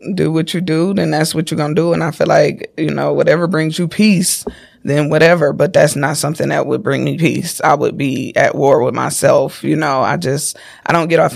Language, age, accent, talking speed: English, 20-39, American, 250 wpm